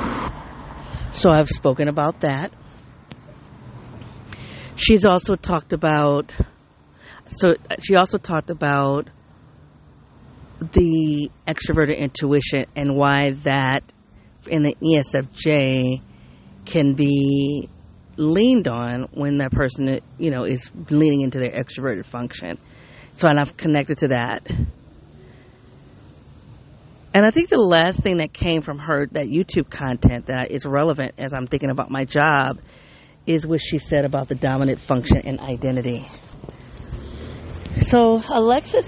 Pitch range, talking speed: 135-160 Hz, 120 wpm